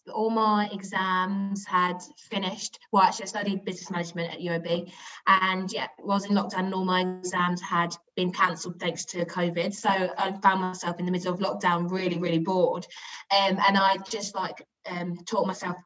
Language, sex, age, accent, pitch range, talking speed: English, female, 20-39, British, 180-210 Hz, 180 wpm